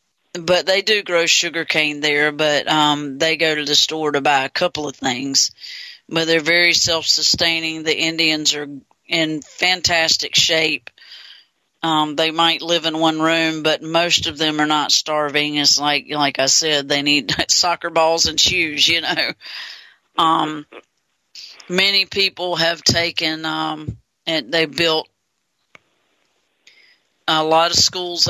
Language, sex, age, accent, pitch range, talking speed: English, female, 40-59, American, 150-165 Hz, 150 wpm